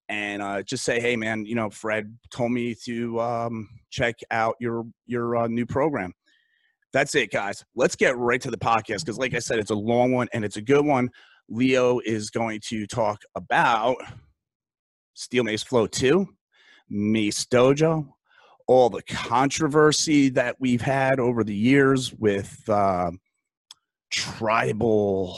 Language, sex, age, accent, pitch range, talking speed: English, male, 30-49, American, 100-125 Hz, 155 wpm